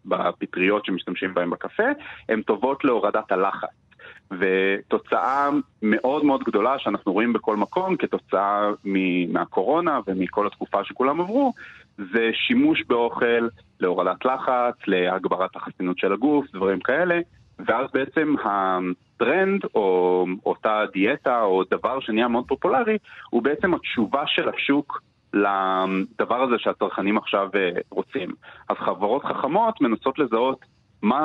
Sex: male